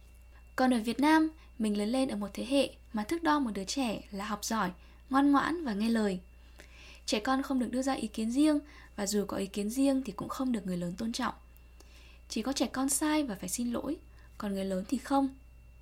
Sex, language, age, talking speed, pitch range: female, Vietnamese, 10-29, 235 wpm, 200-275 Hz